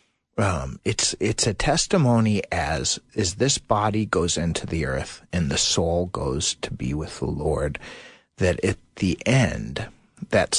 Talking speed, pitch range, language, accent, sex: 155 wpm, 85-110 Hz, English, American, male